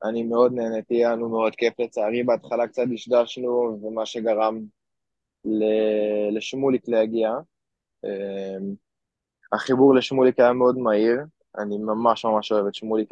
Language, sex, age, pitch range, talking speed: Hebrew, male, 20-39, 105-120 Hz, 120 wpm